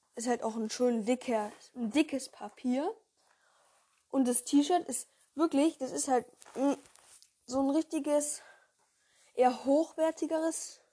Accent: German